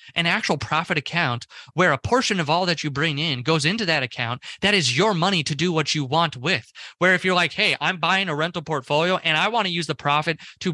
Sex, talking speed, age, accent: male, 250 wpm, 20-39, American